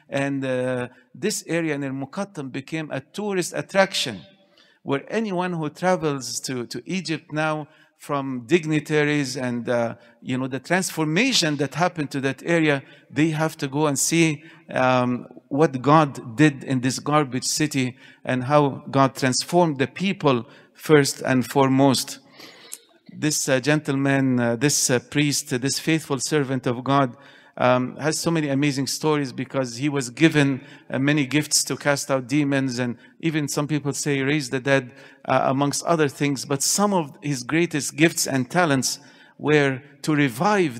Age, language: 50-69, English